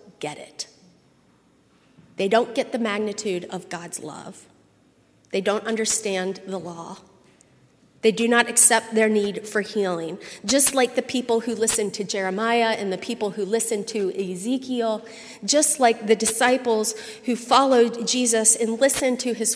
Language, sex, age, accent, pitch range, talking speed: English, female, 30-49, American, 195-235 Hz, 150 wpm